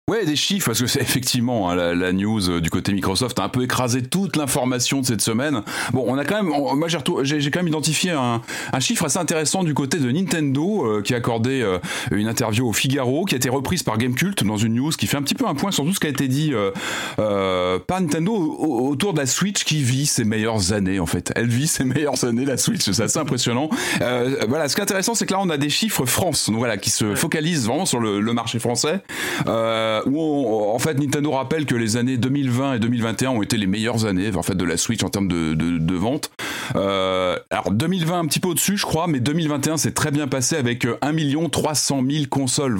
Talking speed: 250 wpm